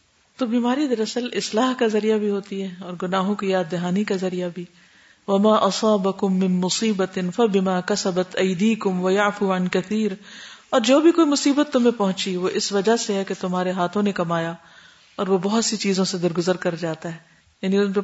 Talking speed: 195 wpm